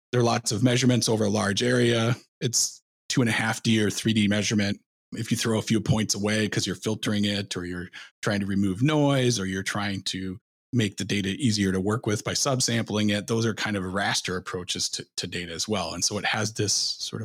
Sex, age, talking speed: male, 30-49, 230 wpm